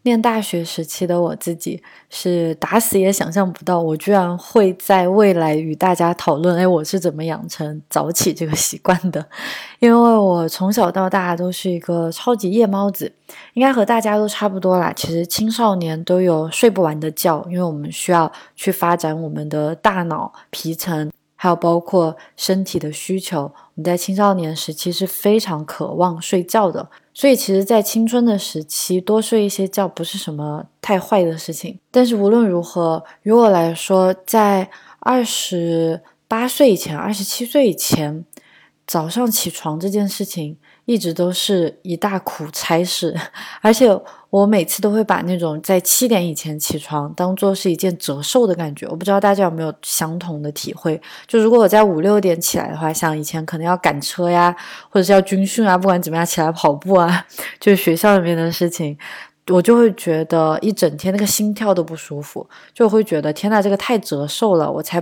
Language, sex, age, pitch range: Chinese, female, 20-39, 160-205 Hz